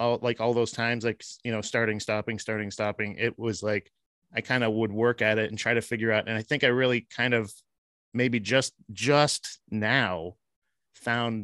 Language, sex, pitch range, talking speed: English, male, 110-145 Hz, 200 wpm